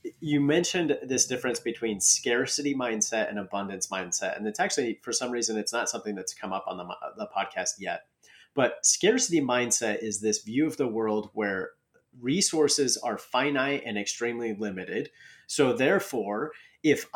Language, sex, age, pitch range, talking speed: English, male, 30-49, 100-130 Hz, 160 wpm